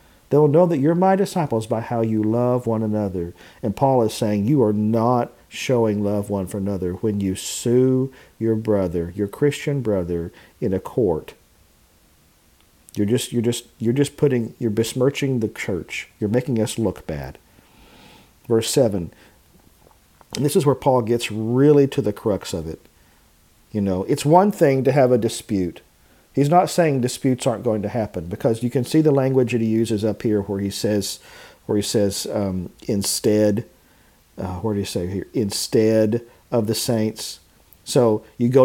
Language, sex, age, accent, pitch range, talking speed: English, male, 50-69, American, 100-125 Hz, 180 wpm